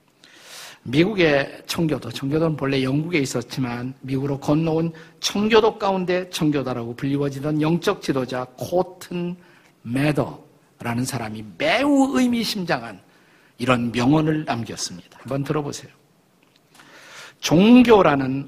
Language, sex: Korean, male